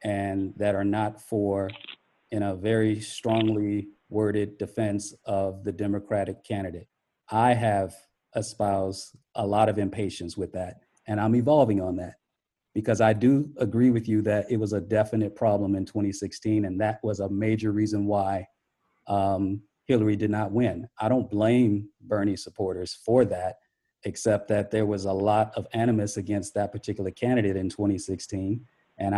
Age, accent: 40-59, American